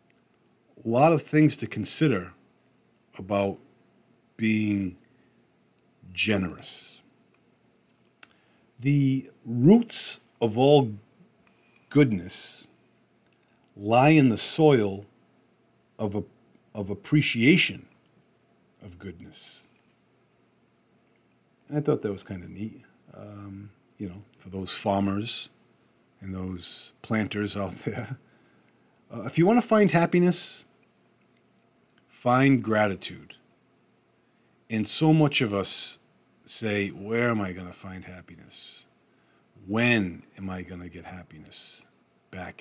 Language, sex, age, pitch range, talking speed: English, male, 50-69, 100-130 Hz, 95 wpm